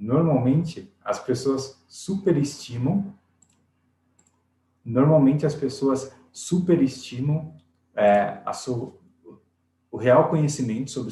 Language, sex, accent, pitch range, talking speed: Portuguese, male, Brazilian, 120-150 Hz, 80 wpm